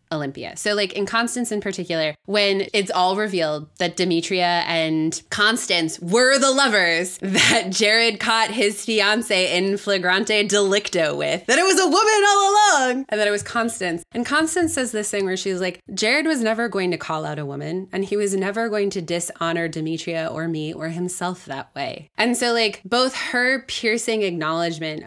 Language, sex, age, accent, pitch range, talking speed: English, female, 20-39, American, 155-205 Hz, 185 wpm